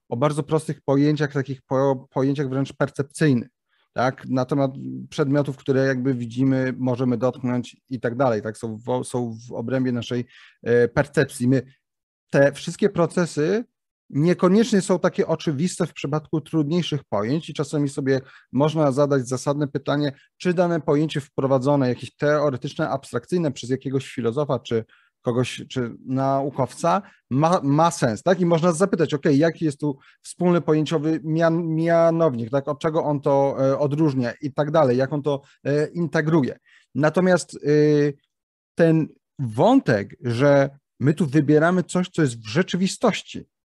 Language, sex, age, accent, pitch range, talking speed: Polish, male, 30-49, native, 135-170 Hz, 140 wpm